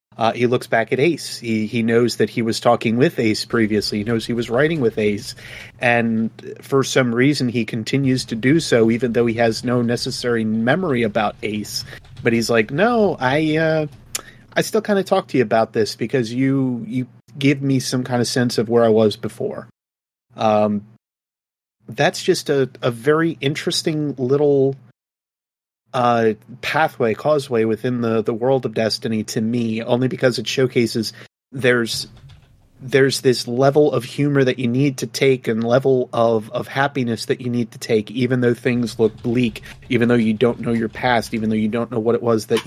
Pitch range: 115-130 Hz